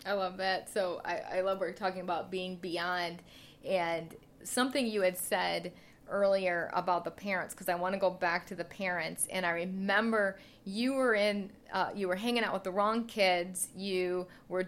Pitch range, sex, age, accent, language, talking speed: 175-200 Hz, female, 30-49, American, English, 190 wpm